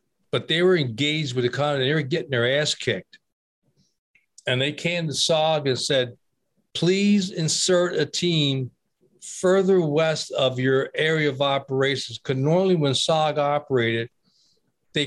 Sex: male